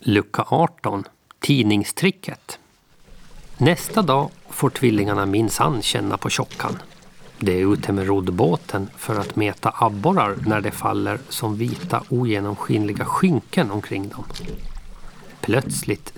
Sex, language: male, Swedish